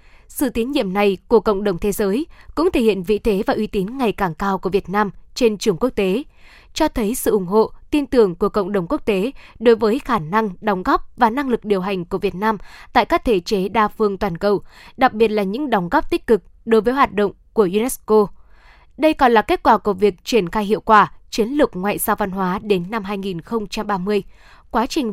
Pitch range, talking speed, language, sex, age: 205-245 Hz, 230 wpm, Vietnamese, female, 10-29